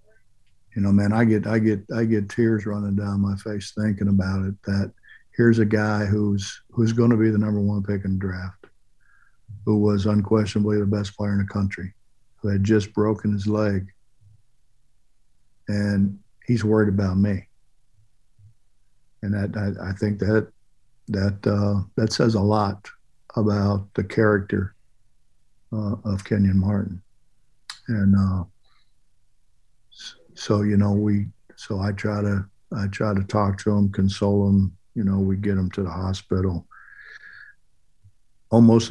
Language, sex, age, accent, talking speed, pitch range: English, male, 50-69, American, 155 wpm, 100-110 Hz